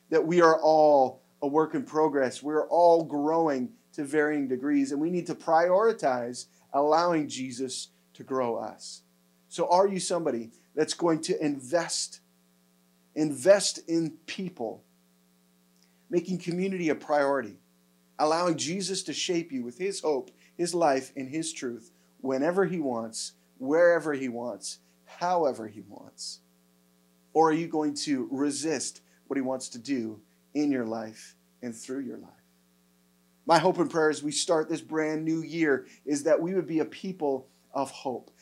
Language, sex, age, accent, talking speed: English, male, 30-49, American, 155 wpm